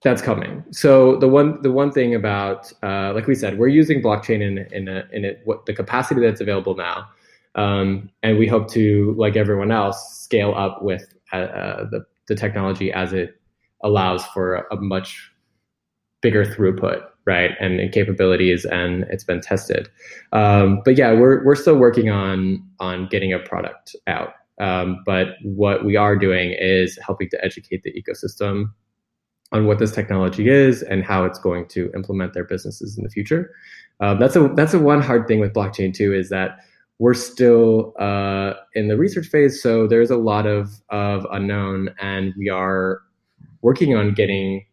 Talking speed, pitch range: 175 wpm, 95-115 Hz